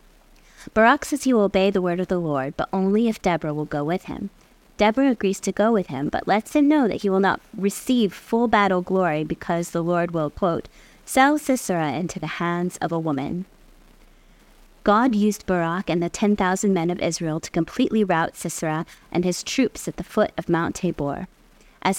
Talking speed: 195 wpm